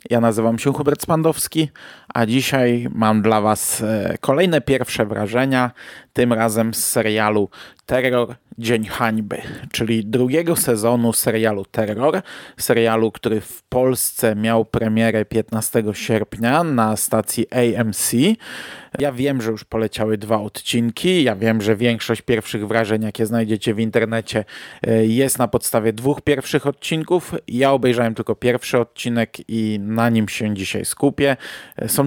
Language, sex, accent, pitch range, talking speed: Polish, male, native, 110-130 Hz, 135 wpm